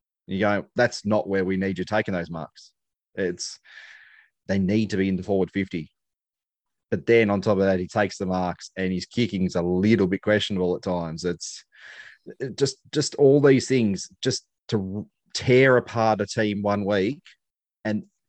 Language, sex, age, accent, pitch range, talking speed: English, male, 30-49, Australian, 95-105 Hz, 185 wpm